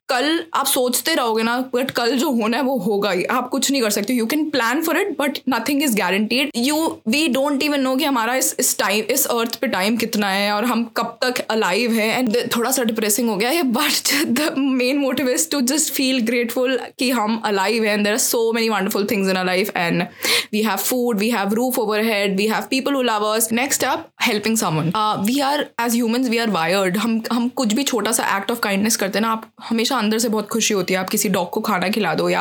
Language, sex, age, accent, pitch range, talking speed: Hindi, female, 20-39, native, 210-260 Hz, 245 wpm